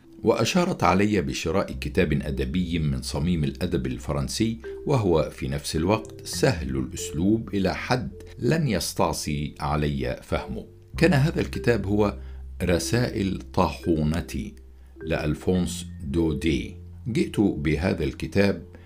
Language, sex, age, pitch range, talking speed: Arabic, male, 60-79, 70-95 Hz, 100 wpm